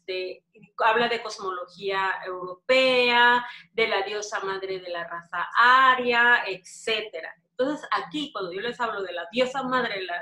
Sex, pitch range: female, 190-250 Hz